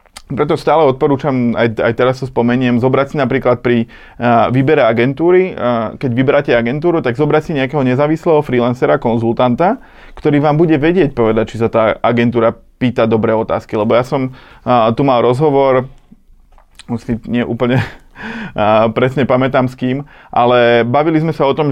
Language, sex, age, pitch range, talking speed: Slovak, male, 20-39, 120-145 Hz, 165 wpm